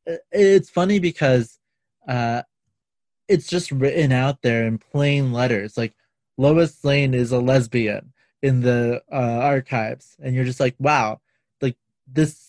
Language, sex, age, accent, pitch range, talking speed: English, male, 20-39, American, 120-140 Hz, 140 wpm